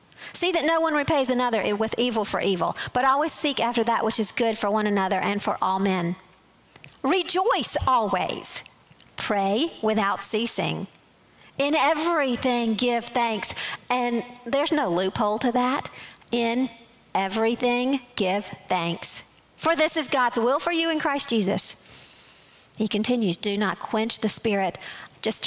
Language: English